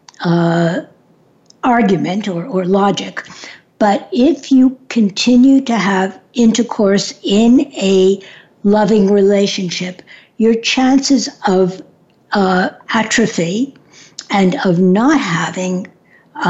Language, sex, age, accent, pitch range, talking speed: English, female, 60-79, American, 190-250 Hz, 95 wpm